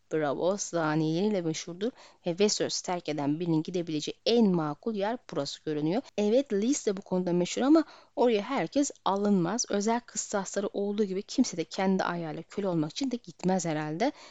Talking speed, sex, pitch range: 160 wpm, female, 185-250 Hz